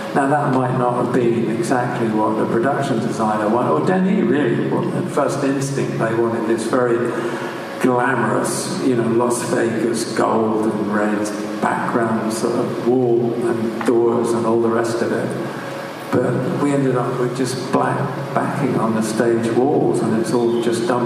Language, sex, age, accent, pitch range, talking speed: English, male, 50-69, British, 115-125 Hz, 170 wpm